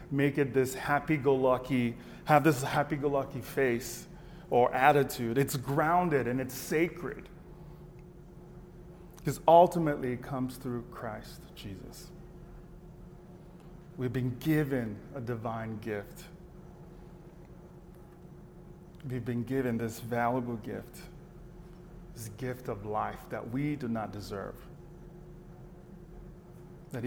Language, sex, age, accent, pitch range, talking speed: English, male, 30-49, American, 125-175 Hz, 100 wpm